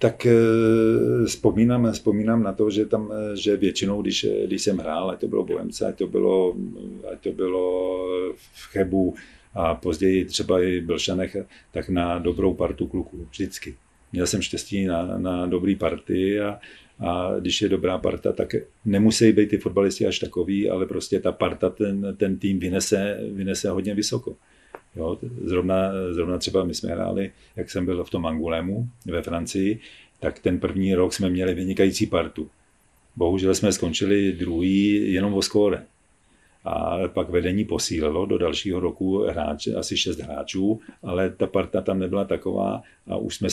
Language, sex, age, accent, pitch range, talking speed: Czech, male, 40-59, native, 90-105 Hz, 160 wpm